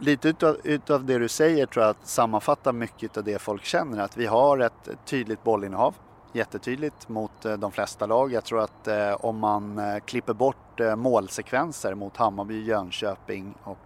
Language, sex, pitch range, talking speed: English, male, 105-130 Hz, 180 wpm